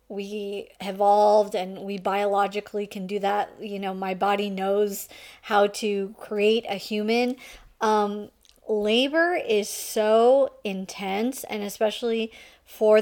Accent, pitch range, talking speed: American, 205-250 Hz, 120 wpm